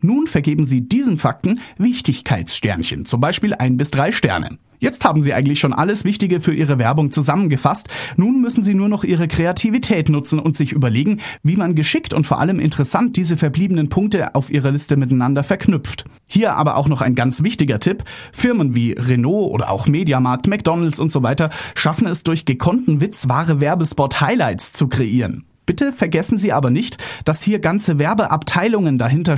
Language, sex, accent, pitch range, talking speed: German, male, German, 130-185 Hz, 175 wpm